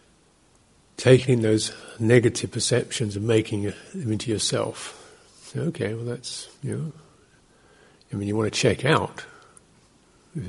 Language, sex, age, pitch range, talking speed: English, male, 50-69, 110-140 Hz, 125 wpm